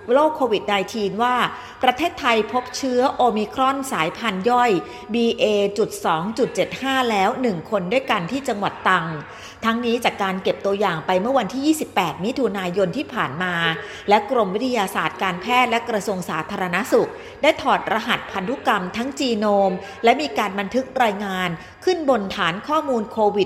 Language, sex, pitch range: Thai, female, 195-255 Hz